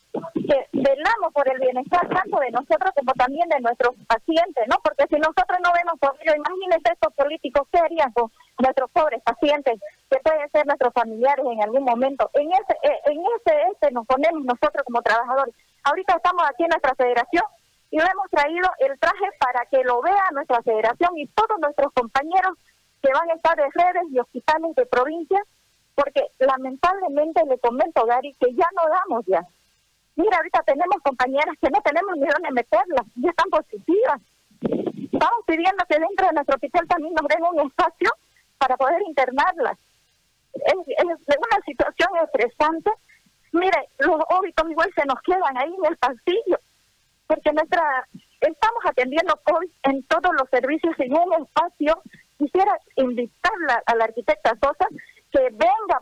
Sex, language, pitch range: female, Spanish, 265-345 Hz